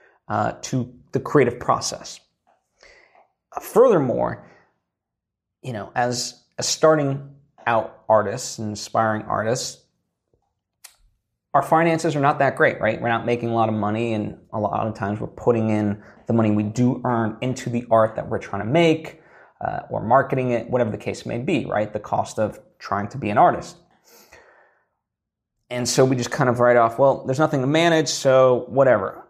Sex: male